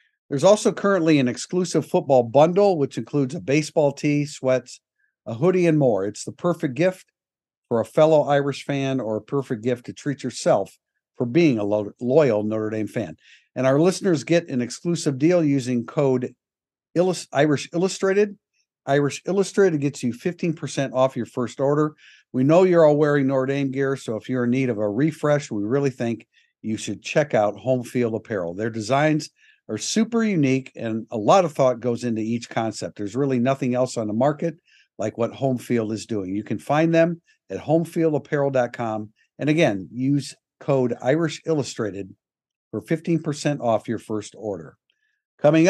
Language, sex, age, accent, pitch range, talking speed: English, male, 50-69, American, 120-160 Hz, 170 wpm